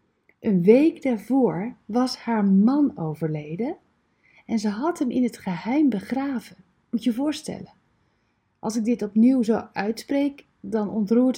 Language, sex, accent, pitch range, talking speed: Dutch, female, Dutch, 185-245 Hz, 140 wpm